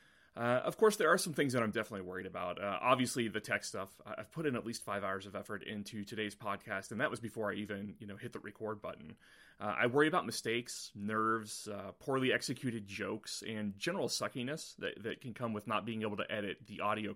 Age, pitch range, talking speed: 30-49, 100-115 Hz, 230 wpm